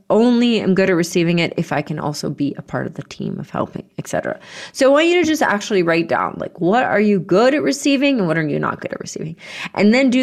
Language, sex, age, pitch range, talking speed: English, female, 30-49, 155-200 Hz, 270 wpm